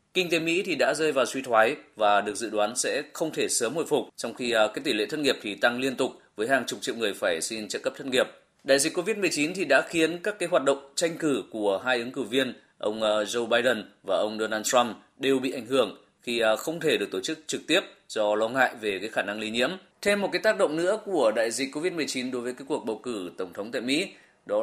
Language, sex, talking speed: Vietnamese, male, 260 wpm